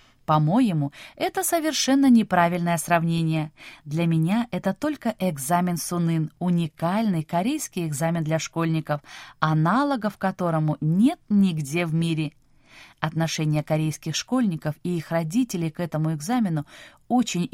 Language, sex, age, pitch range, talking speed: Russian, female, 20-39, 155-210 Hz, 110 wpm